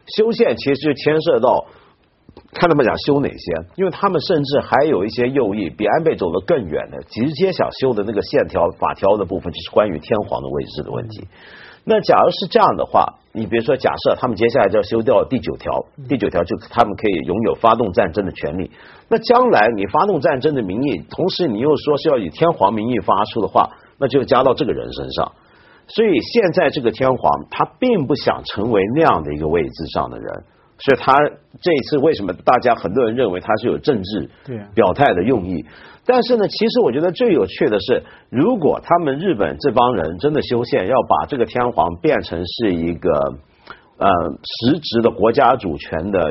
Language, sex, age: Chinese, male, 50-69